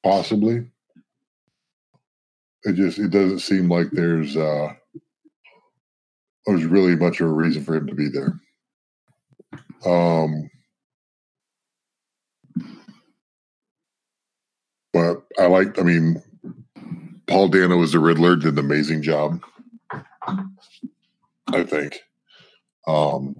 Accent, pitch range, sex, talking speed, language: American, 80-95 Hz, female, 95 wpm, English